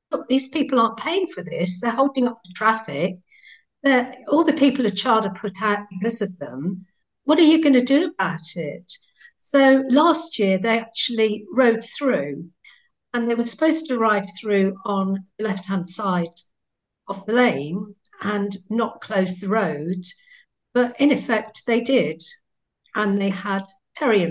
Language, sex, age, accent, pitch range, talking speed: English, female, 50-69, British, 185-250 Hz, 165 wpm